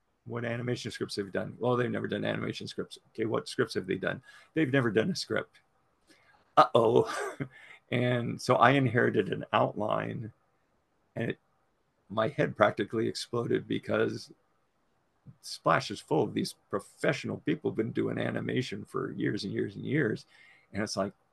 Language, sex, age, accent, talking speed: English, male, 50-69, American, 160 wpm